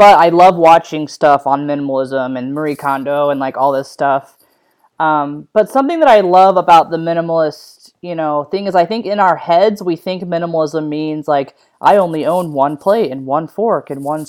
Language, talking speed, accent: English, 200 wpm, American